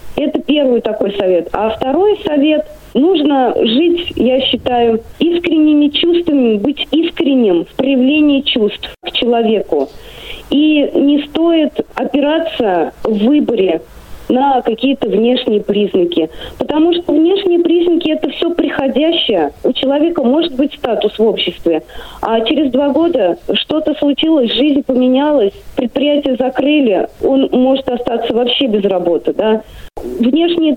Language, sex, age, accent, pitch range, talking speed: Russian, female, 20-39, native, 225-300 Hz, 120 wpm